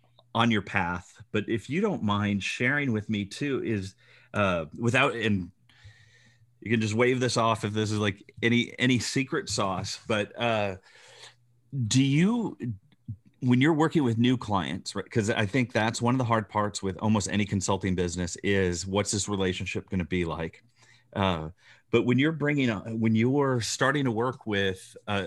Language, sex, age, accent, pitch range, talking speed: English, male, 30-49, American, 100-120 Hz, 185 wpm